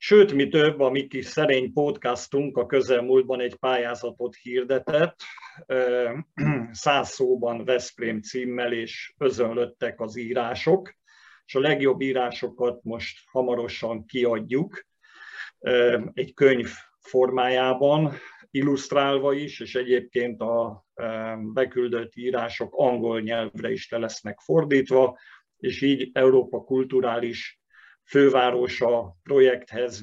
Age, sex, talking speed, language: 50-69, male, 100 wpm, Hungarian